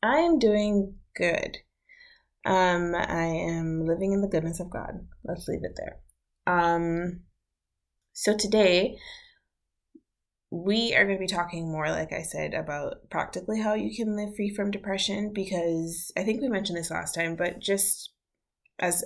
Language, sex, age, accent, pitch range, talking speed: English, female, 20-39, American, 155-190 Hz, 155 wpm